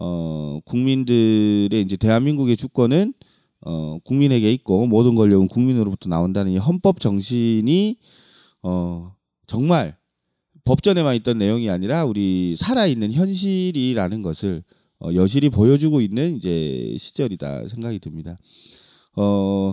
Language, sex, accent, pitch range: Korean, male, native, 95-155 Hz